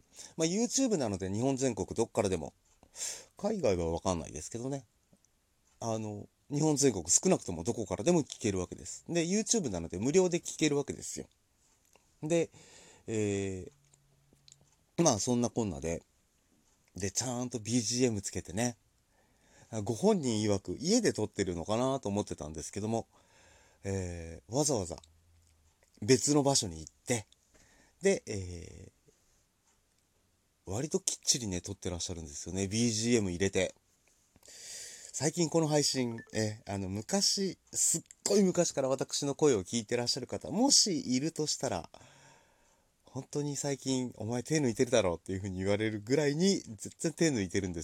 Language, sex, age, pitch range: Japanese, male, 30-49, 95-140 Hz